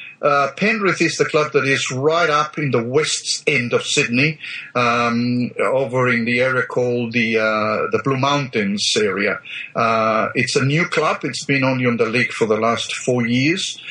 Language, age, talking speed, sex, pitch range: English, 50-69, 185 wpm, male, 120-145 Hz